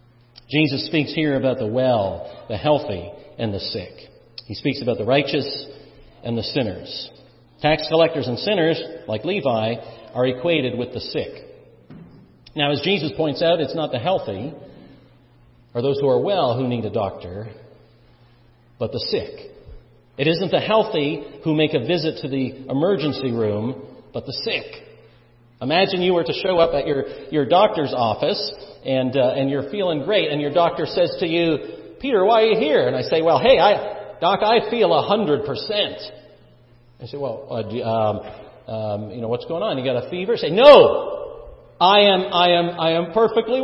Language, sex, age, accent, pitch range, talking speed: English, male, 50-69, American, 120-165 Hz, 180 wpm